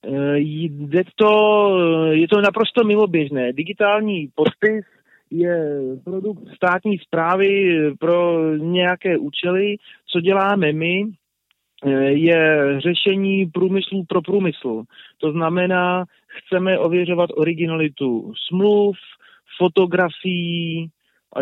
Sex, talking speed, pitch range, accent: male, 85 wpm, 150-190 Hz, native